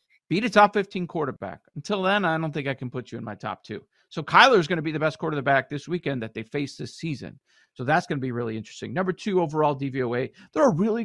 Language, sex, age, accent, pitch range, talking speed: English, male, 50-69, American, 120-175 Hz, 260 wpm